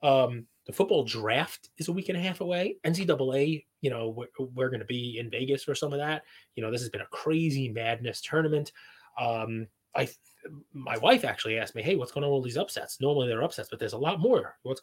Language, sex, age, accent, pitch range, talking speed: English, male, 20-39, American, 120-150 Hz, 230 wpm